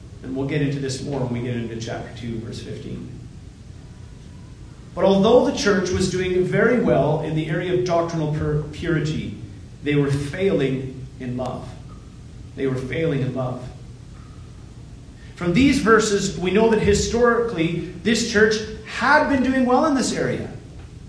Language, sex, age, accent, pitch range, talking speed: English, male, 30-49, American, 135-200 Hz, 155 wpm